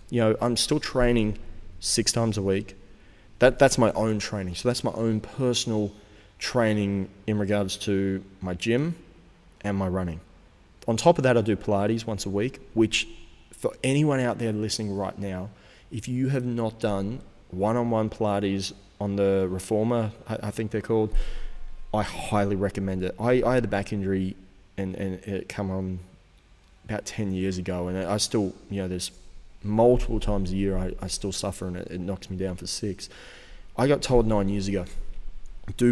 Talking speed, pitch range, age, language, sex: 180 wpm, 95-110 Hz, 20-39, English, male